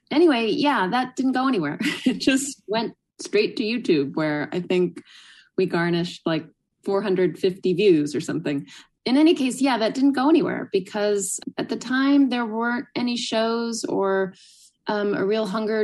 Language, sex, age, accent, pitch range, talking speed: English, female, 20-39, American, 180-245 Hz, 165 wpm